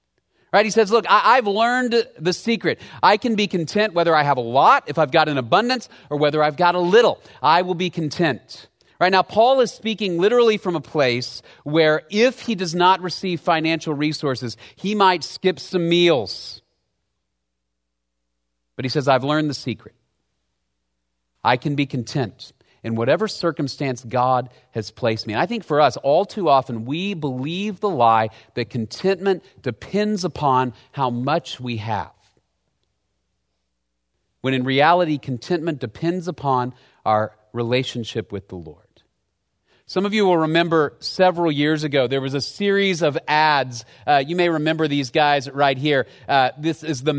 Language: English